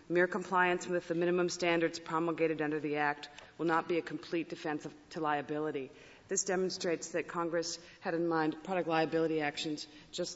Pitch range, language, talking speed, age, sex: 155-185 Hz, English, 170 wpm, 40-59, female